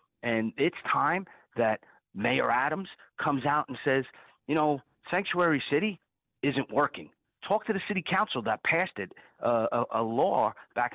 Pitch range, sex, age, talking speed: 115-165 Hz, male, 40-59, 160 wpm